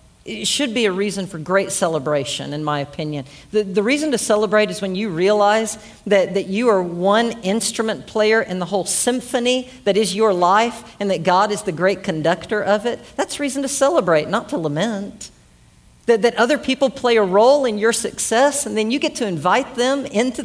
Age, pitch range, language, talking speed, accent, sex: 50-69, 205-270 Hz, English, 200 wpm, American, female